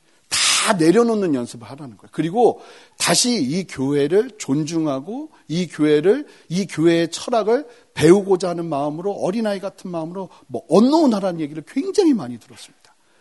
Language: Korean